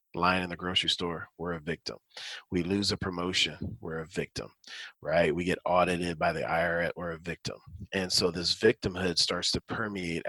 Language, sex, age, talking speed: English, male, 40-59, 185 wpm